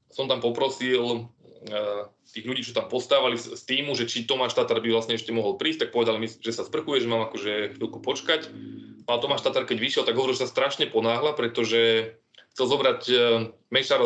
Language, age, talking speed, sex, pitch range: Slovak, 20-39, 200 wpm, male, 115-125 Hz